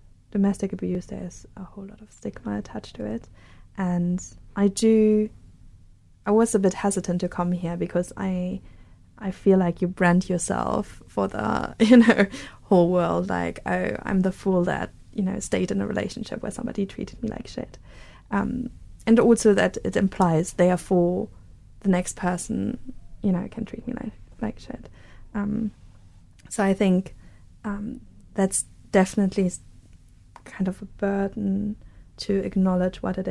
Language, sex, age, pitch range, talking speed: English, female, 20-39, 150-205 Hz, 160 wpm